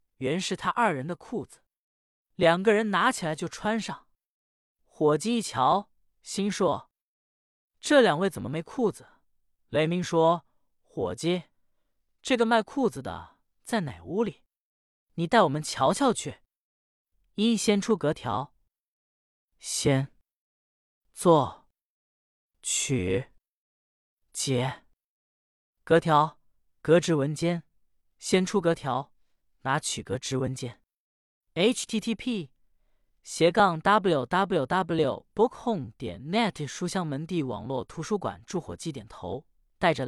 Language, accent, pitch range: Chinese, native, 130-205 Hz